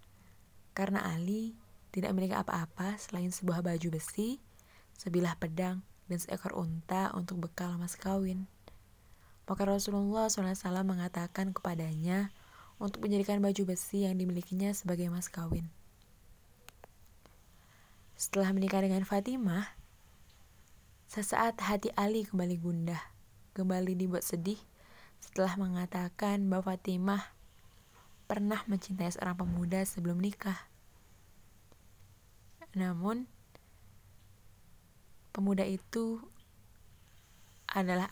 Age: 20-39